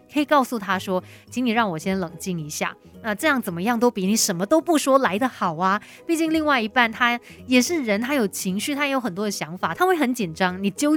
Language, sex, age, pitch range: Chinese, female, 30-49, 185-255 Hz